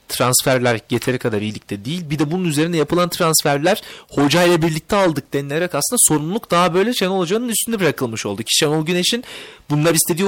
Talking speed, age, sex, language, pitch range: 175 wpm, 30-49, male, Turkish, 130-175 Hz